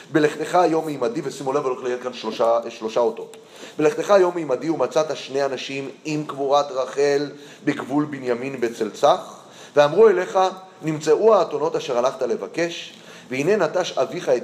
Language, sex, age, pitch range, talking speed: Hebrew, male, 30-49, 140-235 Hz, 140 wpm